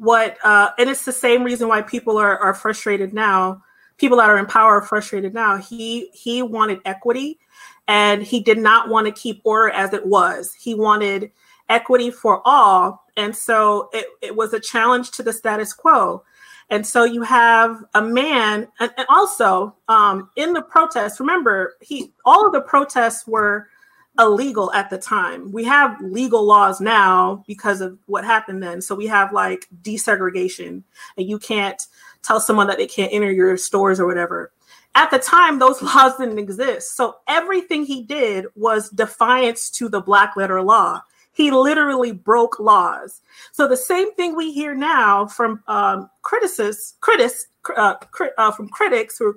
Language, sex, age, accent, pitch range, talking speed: English, female, 30-49, American, 205-265 Hz, 175 wpm